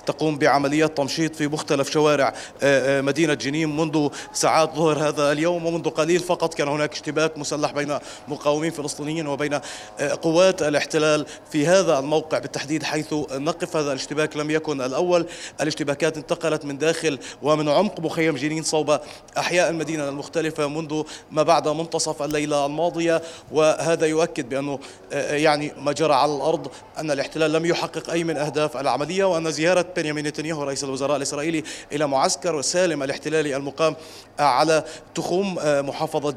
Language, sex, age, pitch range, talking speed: Arabic, male, 30-49, 145-165 Hz, 140 wpm